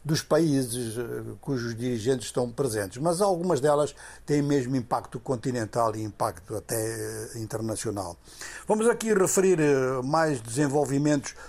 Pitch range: 120-150 Hz